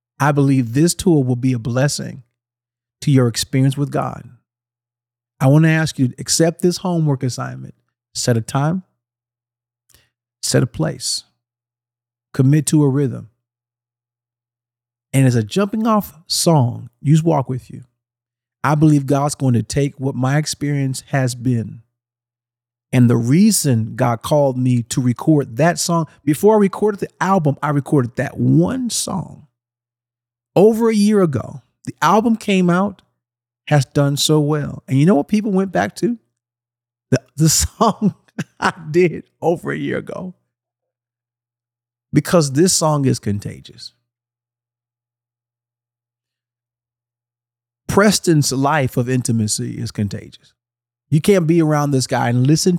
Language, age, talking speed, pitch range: English, 40-59, 140 wpm, 120-150 Hz